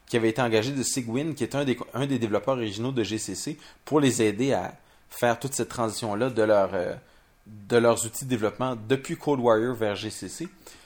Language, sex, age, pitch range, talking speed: French, male, 30-49, 105-125 Hz, 210 wpm